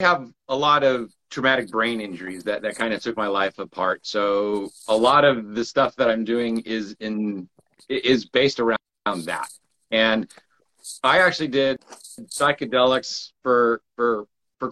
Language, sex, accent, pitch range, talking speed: English, male, American, 105-130 Hz, 155 wpm